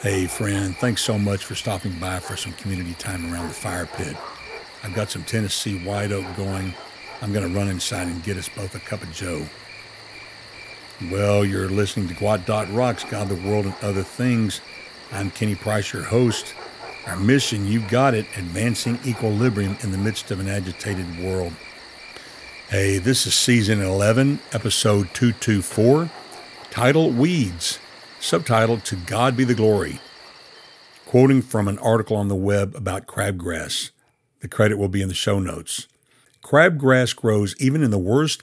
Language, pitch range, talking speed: English, 100-120 Hz, 165 wpm